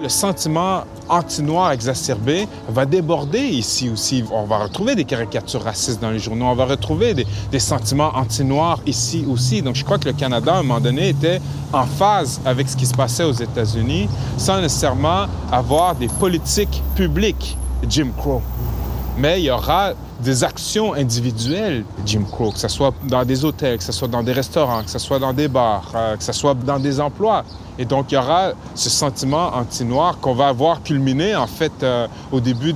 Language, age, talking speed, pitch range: French, 30-49, 190 wpm, 115-145 Hz